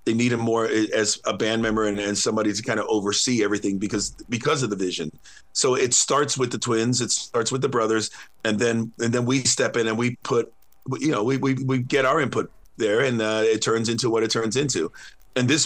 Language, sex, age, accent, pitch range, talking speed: English, male, 40-59, American, 105-130 Hz, 240 wpm